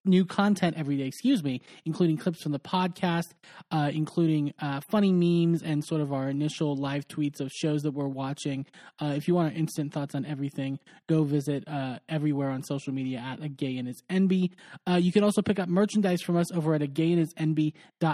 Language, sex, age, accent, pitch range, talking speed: English, male, 20-39, American, 145-180 Hz, 205 wpm